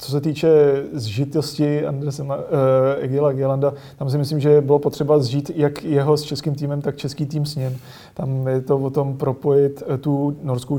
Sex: male